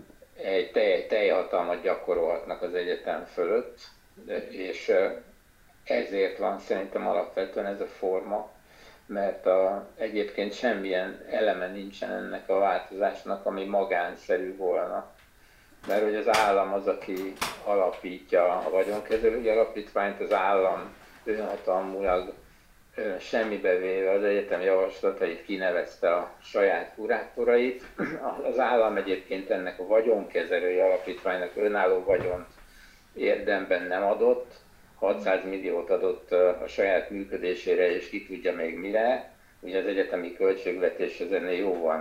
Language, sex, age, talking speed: Hungarian, male, 50-69, 110 wpm